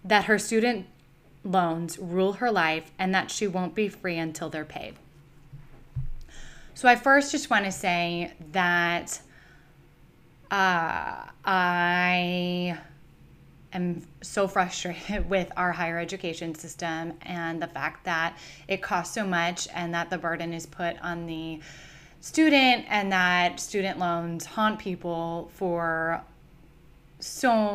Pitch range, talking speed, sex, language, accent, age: 165-195 Hz, 130 wpm, female, English, American, 10-29